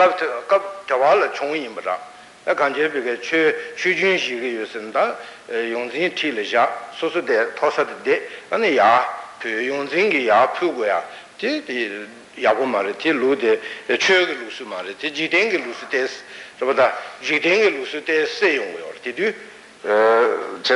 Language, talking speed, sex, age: Italian, 95 wpm, male, 60-79